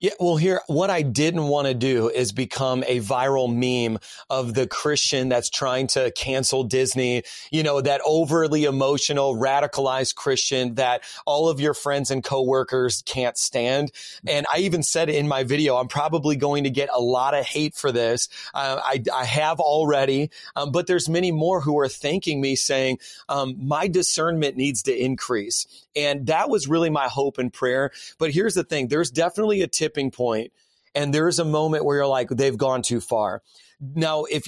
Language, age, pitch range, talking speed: English, 30-49, 130-150 Hz, 185 wpm